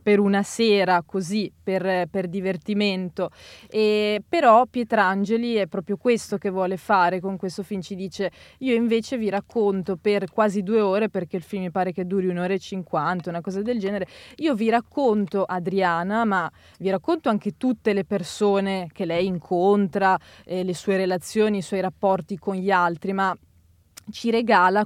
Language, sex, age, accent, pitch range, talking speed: Italian, female, 20-39, native, 185-215 Hz, 170 wpm